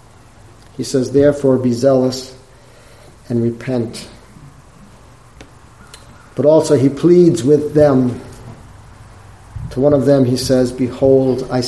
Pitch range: 115-145 Hz